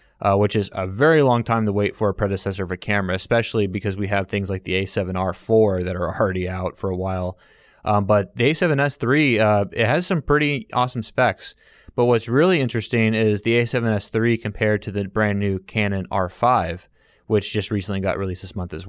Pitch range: 100-115 Hz